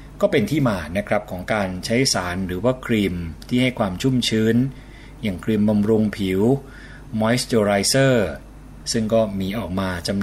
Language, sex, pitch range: Thai, male, 100-130 Hz